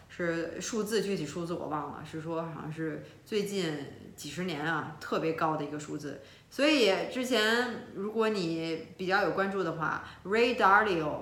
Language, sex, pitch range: Chinese, female, 160-200 Hz